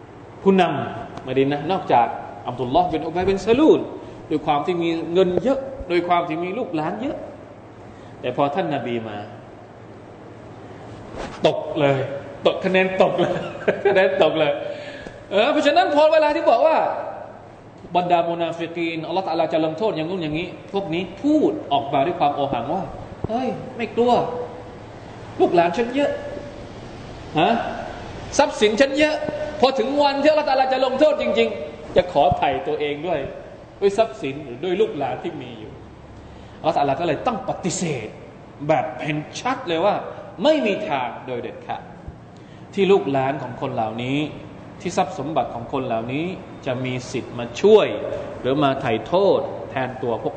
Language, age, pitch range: Thai, 20-39, 125-205 Hz